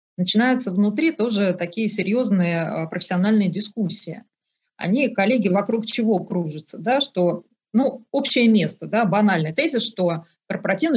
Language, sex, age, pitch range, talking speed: Russian, female, 30-49, 180-225 Hz, 120 wpm